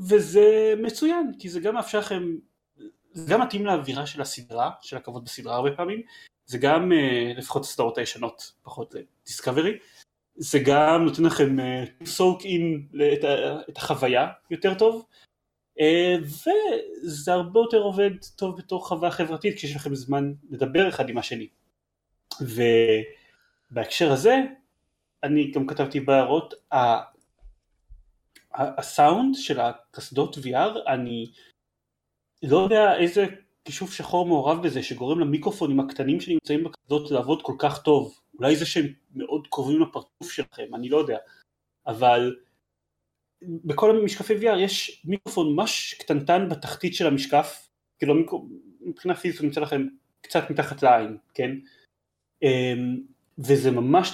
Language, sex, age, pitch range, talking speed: Hebrew, male, 30-49, 140-195 Hz, 125 wpm